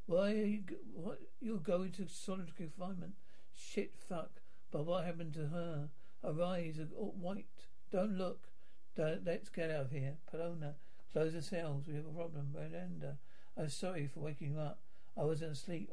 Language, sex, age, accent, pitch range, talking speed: English, male, 60-79, British, 155-180 Hz, 170 wpm